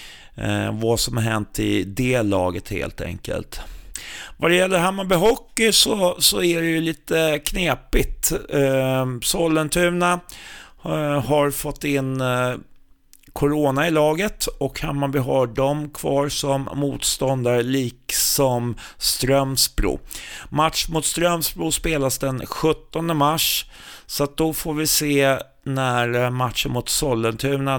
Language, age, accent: Swedish, 30-49, native